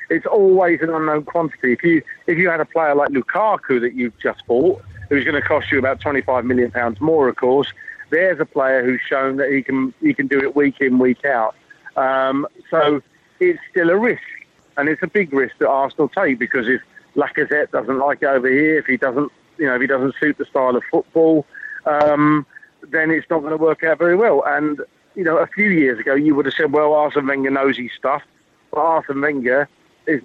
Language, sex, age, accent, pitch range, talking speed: Swedish, male, 40-59, British, 135-155 Hz, 225 wpm